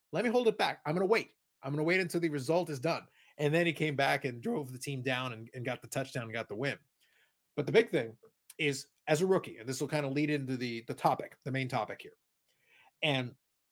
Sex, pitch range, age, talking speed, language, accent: male, 135-175 Hz, 30-49, 265 wpm, English, American